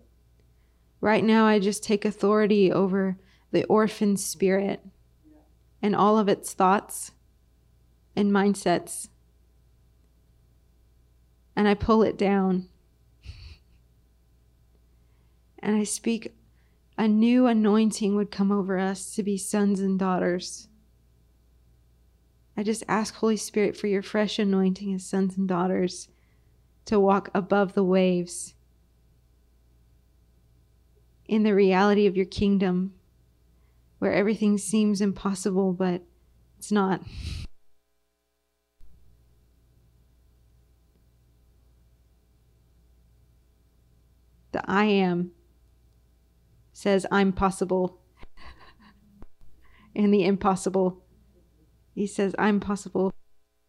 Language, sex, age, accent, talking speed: English, female, 30-49, American, 90 wpm